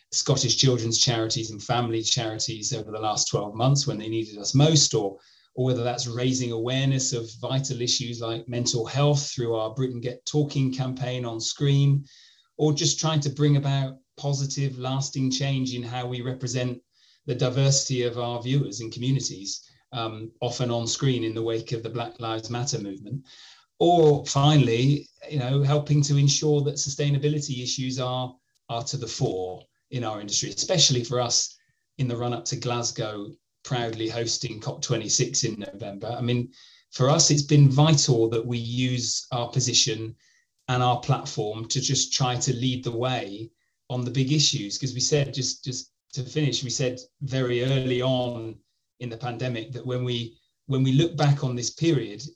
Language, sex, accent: English, male, British